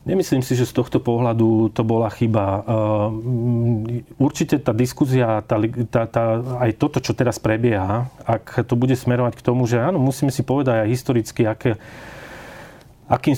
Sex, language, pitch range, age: male, Slovak, 120-140 Hz, 30-49